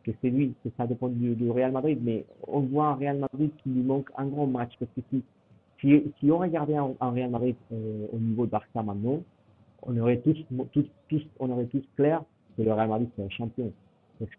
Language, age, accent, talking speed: French, 50-69, French, 235 wpm